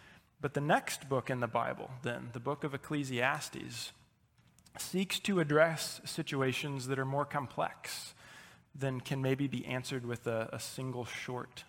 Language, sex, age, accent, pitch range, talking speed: English, male, 20-39, American, 130-155 Hz, 155 wpm